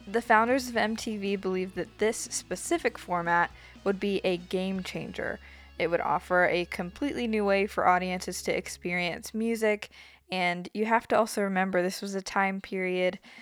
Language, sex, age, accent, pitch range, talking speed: English, female, 20-39, American, 180-215 Hz, 165 wpm